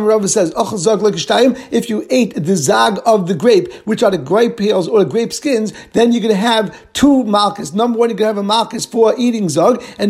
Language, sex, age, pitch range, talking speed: English, male, 50-69, 205-245 Hz, 225 wpm